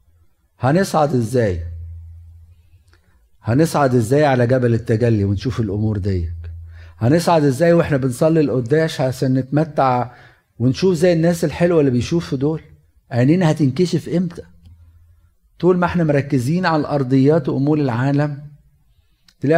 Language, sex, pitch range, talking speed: Arabic, male, 100-145 Hz, 110 wpm